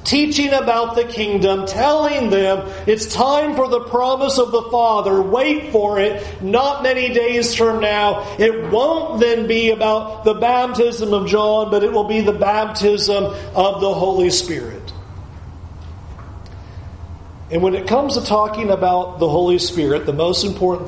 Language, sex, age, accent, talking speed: English, male, 40-59, American, 155 wpm